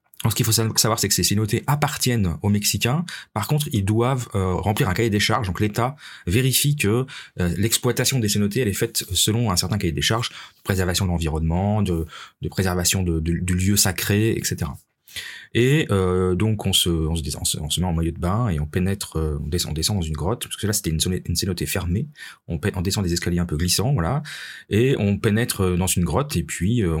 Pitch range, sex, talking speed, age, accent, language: 90-120 Hz, male, 230 wpm, 30-49, French, French